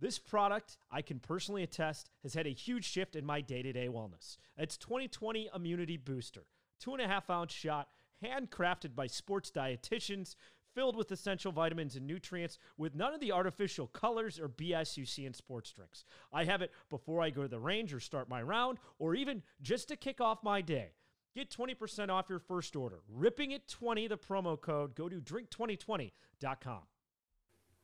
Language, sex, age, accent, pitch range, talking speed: English, male, 30-49, American, 110-165 Hz, 170 wpm